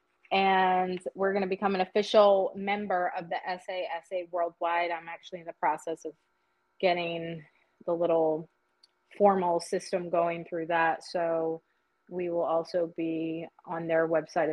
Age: 20-39